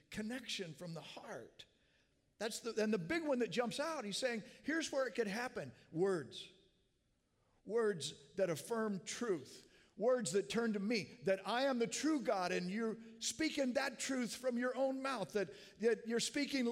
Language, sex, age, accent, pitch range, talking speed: English, male, 50-69, American, 155-255 Hz, 175 wpm